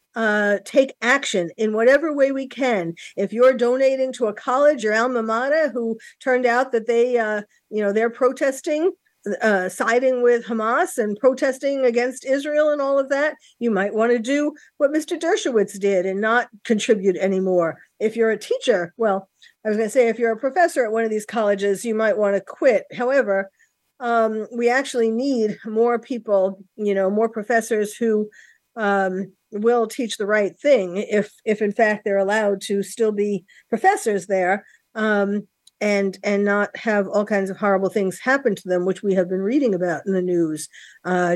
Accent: American